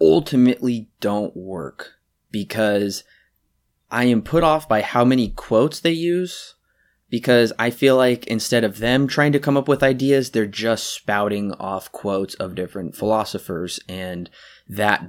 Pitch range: 100-125 Hz